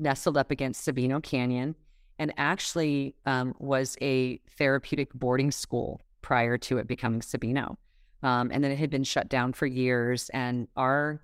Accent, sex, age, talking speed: American, female, 30-49, 160 wpm